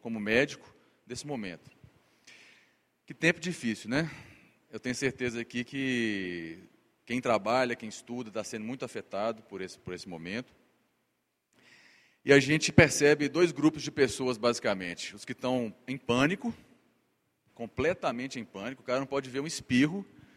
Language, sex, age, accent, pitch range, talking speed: Portuguese, male, 30-49, Brazilian, 115-150 Hz, 145 wpm